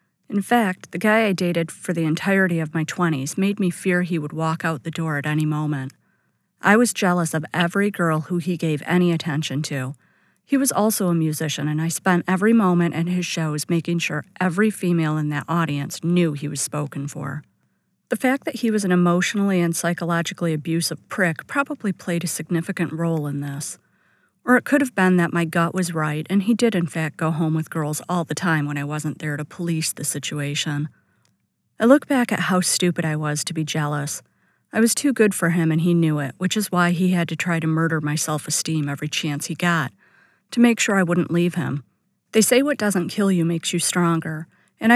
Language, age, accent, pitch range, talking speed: English, 40-59, American, 155-190 Hz, 215 wpm